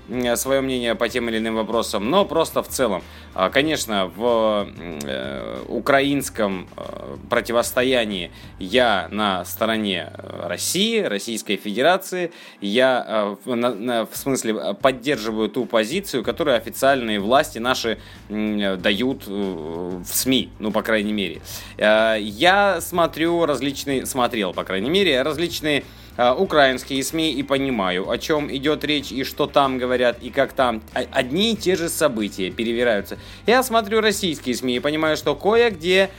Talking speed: 120 wpm